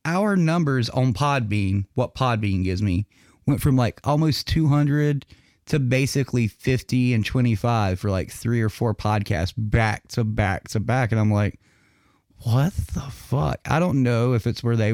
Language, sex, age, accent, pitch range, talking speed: English, male, 30-49, American, 105-130 Hz, 170 wpm